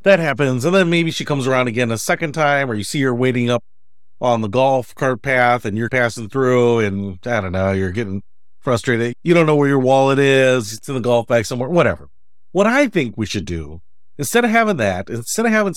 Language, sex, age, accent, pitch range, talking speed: English, male, 40-59, American, 105-150 Hz, 230 wpm